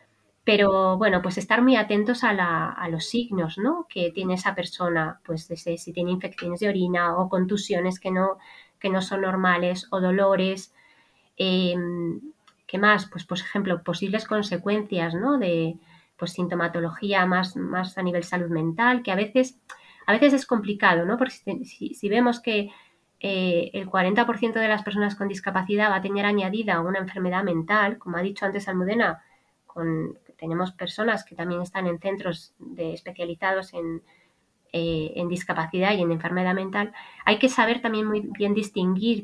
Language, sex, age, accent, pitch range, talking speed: Spanish, female, 20-39, Spanish, 175-215 Hz, 170 wpm